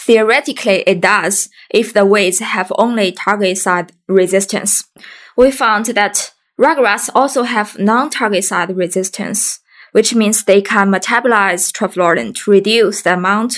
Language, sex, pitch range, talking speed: English, female, 185-220 Hz, 135 wpm